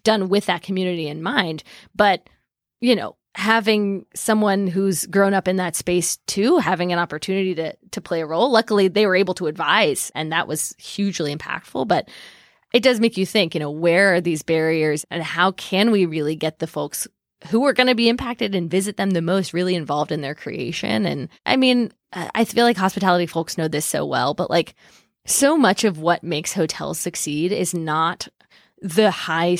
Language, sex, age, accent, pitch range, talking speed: English, female, 20-39, American, 175-230 Hz, 200 wpm